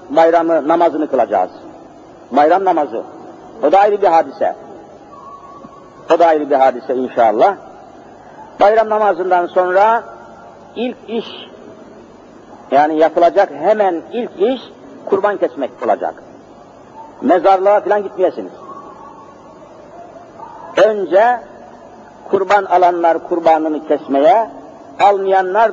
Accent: native